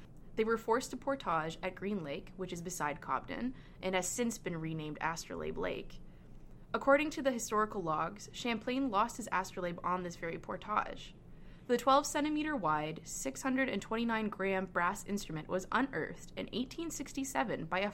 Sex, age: female, 20-39